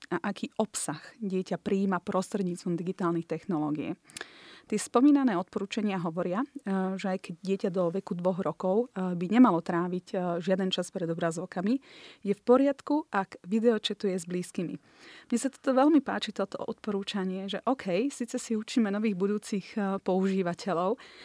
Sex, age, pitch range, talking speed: female, 30-49, 185-215 Hz, 140 wpm